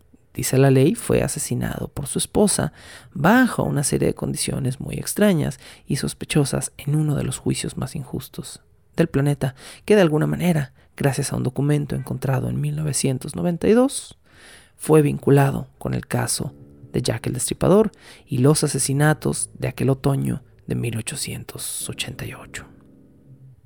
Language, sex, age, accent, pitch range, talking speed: Spanish, male, 40-59, Mexican, 130-160 Hz, 135 wpm